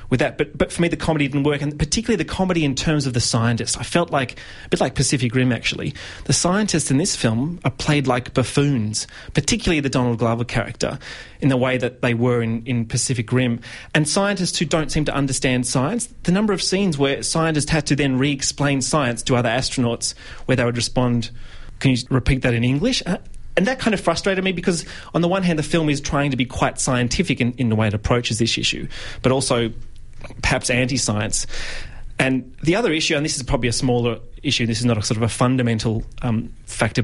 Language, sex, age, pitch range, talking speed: English, male, 30-49, 115-145 Hz, 220 wpm